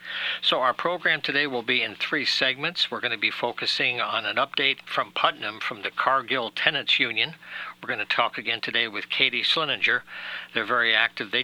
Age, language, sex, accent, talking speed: 60-79, English, male, American, 195 wpm